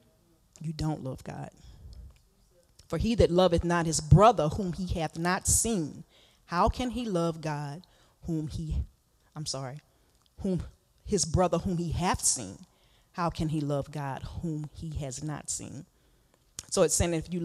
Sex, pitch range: female, 140-170 Hz